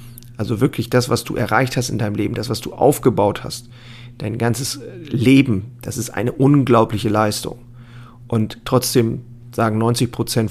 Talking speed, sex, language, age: 160 wpm, male, German, 40-59